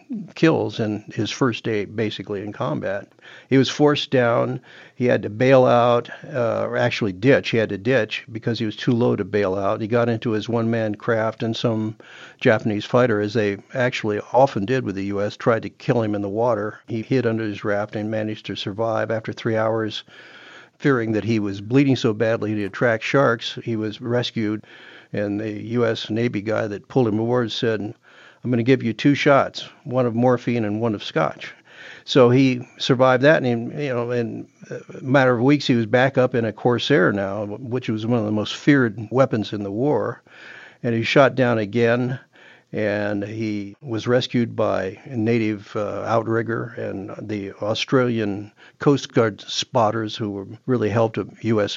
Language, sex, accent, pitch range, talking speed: English, male, American, 105-125 Hz, 185 wpm